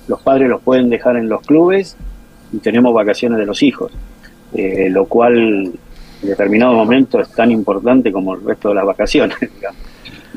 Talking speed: 170 wpm